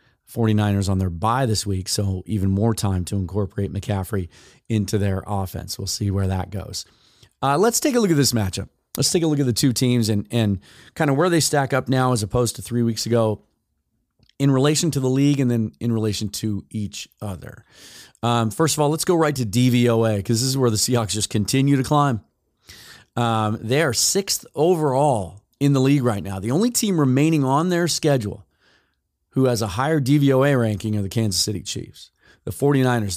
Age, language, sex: 30-49, English, male